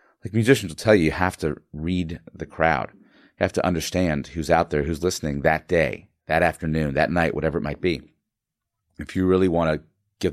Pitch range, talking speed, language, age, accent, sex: 80-105 Hz, 210 wpm, English, 30-49, American, male